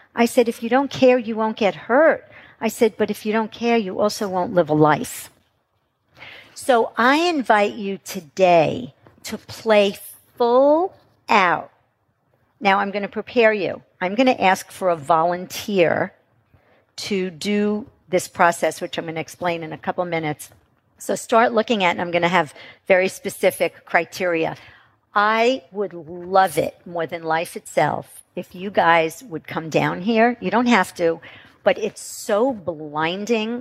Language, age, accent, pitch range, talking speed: English, 50-69, American, 170-215 Hz, 160 wpm